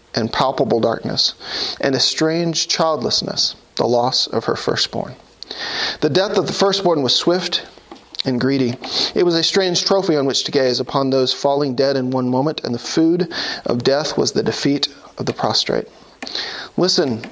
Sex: male